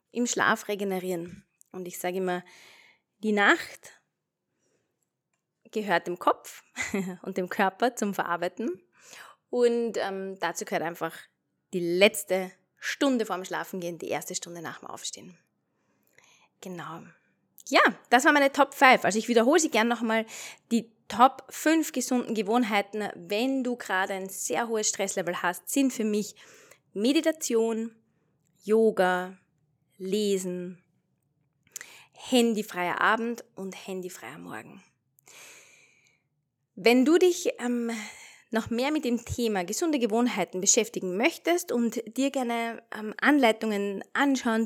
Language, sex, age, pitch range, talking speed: German, female, 20-39, 185-245 Hz, 120 wpm